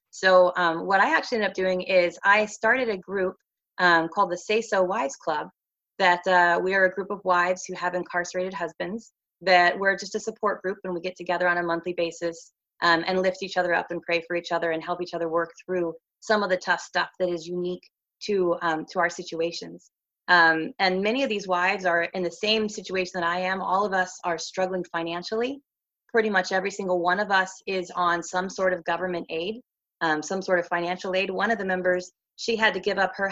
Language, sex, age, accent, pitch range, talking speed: English, female, 20-39, American, 175-205 Hz, 225 wpm